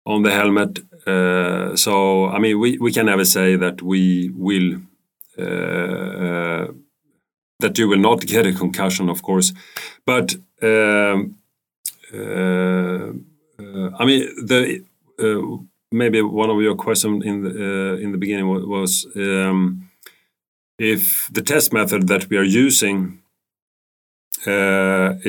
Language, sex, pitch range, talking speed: English, male, 90-105 Hz, 135 wpm